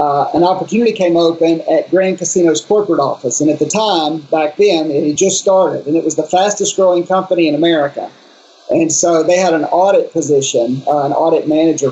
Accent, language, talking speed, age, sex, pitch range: American, English, 195 wpm, 40-59, male, 150-175 Hz